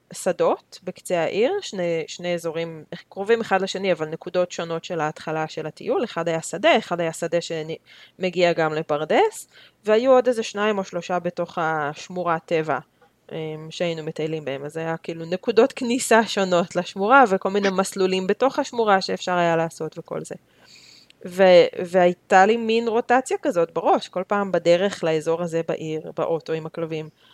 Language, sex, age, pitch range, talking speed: Hebrew, female, 20-39, 165-200 Hz, 155 wpm